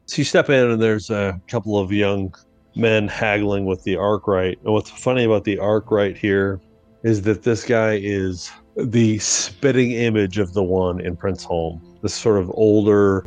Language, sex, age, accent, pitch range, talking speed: English, male, 30-49, American, 90-110 Hz, 185 wpm